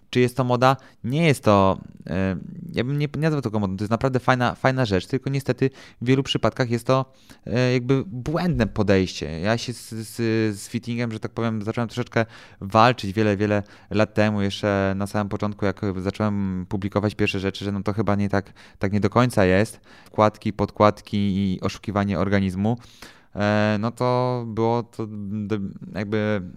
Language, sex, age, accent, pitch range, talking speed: Polish, male, 20-39, native, 100-115 Hz, 170 wpm